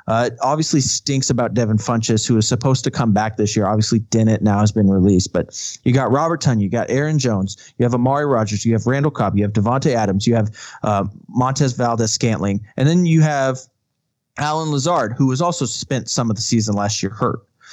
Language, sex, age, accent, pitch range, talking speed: English, male, 20-39, American, 110-140 Hz, 215 wpm